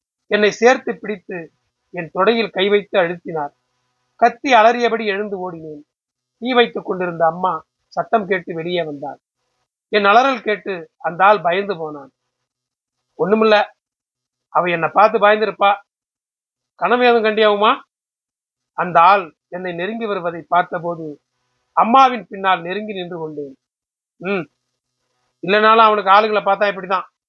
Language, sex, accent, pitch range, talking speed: Tamil, male, native, 150-215 Hz, 110 wpm